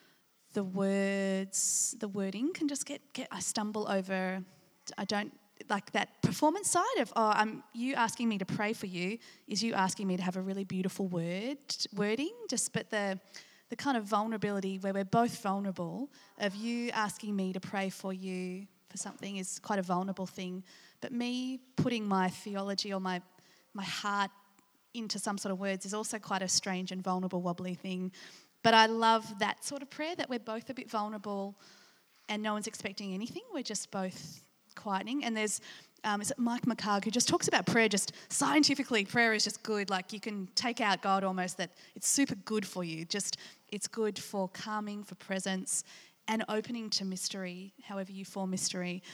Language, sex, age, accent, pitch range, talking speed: English, female, 20-39, Australian, 190-225 Hz, 190 wpm